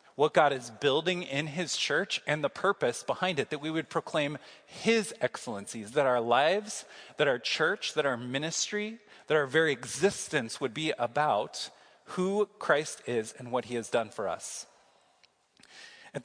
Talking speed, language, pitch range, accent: 165 wpm, English, 135-180 Hz, American